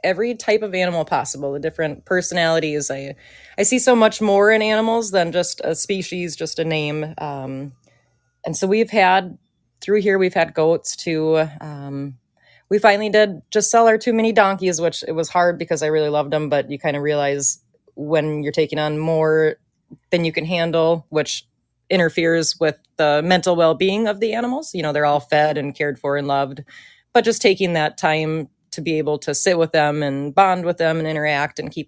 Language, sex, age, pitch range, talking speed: English, female, 30-49, 150-185 Hz, 200 wpm